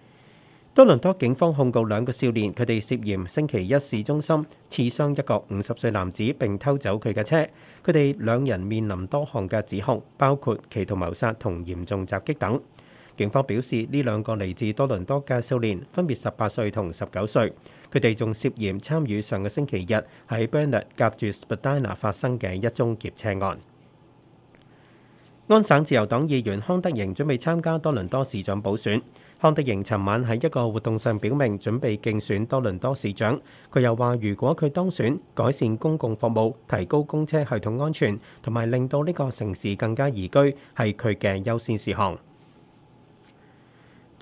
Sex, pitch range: male, 105-140 Hz